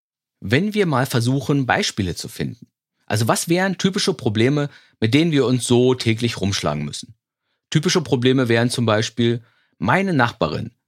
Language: German